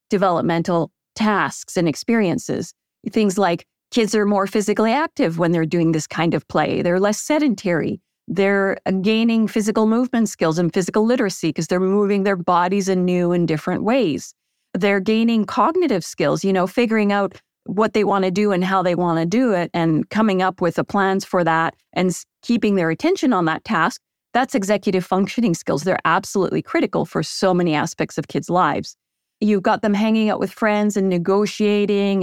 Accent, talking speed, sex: American, 180 wpm, female